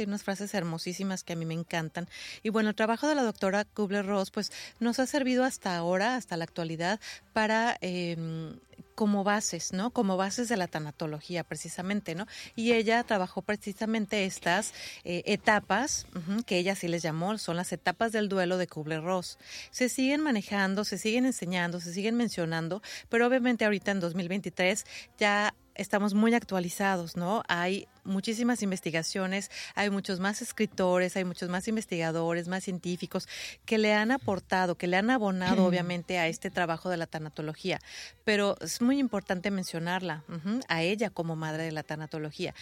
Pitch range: 175-220 Hz